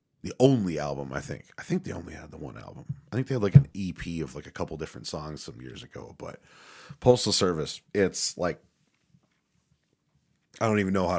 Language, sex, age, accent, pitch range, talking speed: English, male, 30-49, American, 85-125 Hz, 210 wpm